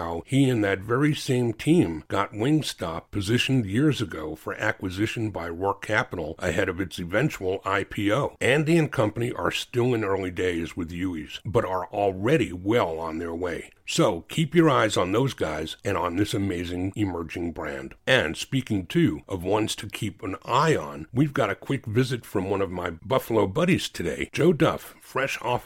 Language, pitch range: English, 95-130 Hz